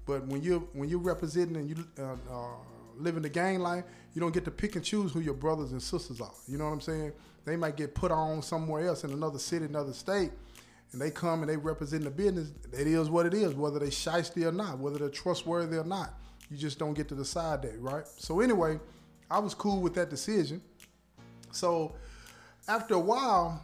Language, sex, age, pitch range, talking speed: English, male, 20-39, 140-170 Hz, 220 wpm